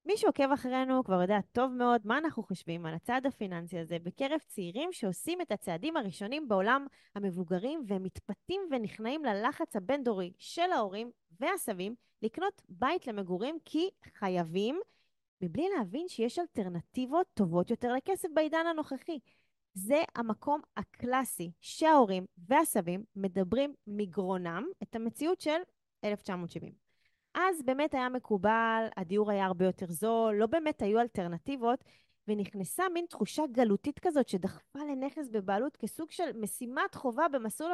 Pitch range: 195-290 Hz